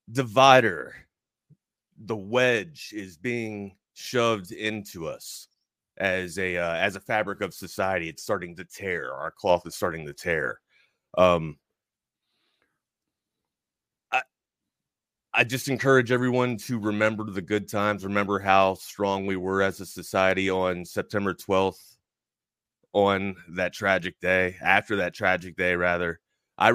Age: 30-49